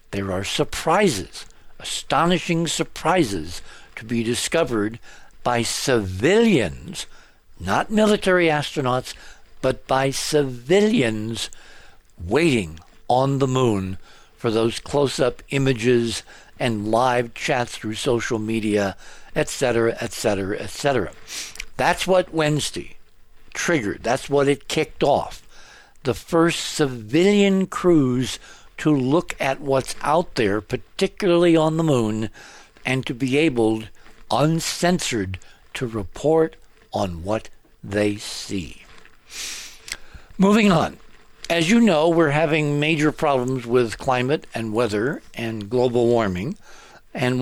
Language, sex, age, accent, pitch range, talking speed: English, male, 60-79, American, 115-155 Hz, 105 wpm